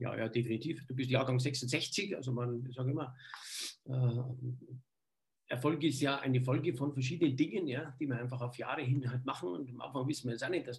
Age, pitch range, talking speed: 50-69, 125-160 Hz, 215 wpm